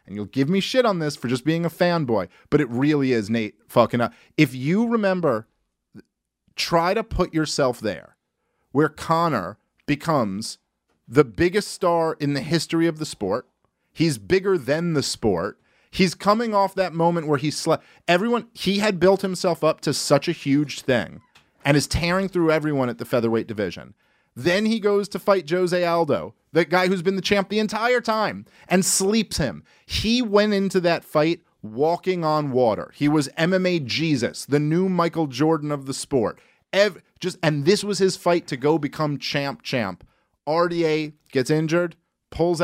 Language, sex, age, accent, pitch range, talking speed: English, male, 40-59, American, 130-175 Hz, 175 wpm